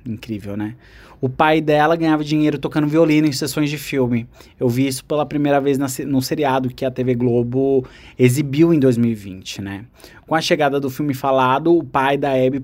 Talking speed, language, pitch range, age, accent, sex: 185 wpm, Portuguese, 120-150 Hz, 20-39, Brazilian, male